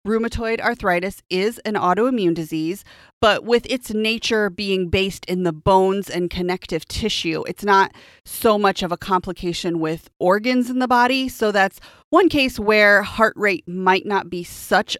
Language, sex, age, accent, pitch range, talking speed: English, female, 30-49, American, 180-225 Hz, 165 wpm